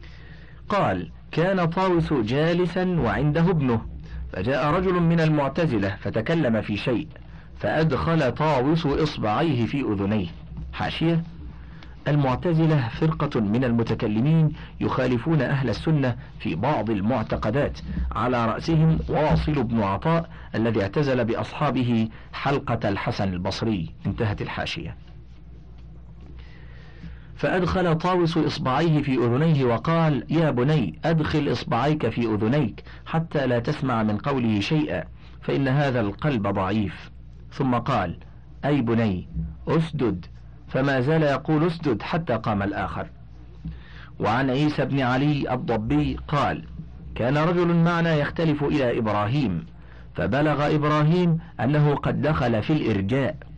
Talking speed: 105 wpm